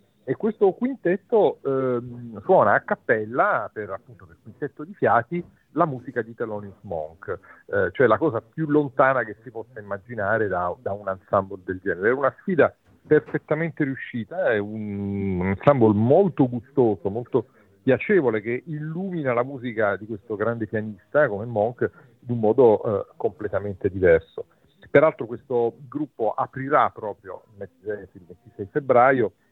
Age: 40-59